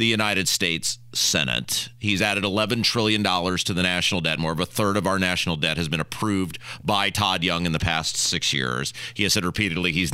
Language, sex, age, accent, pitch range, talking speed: English, male, 40-59, American, 110-175 Hz, 215 wpm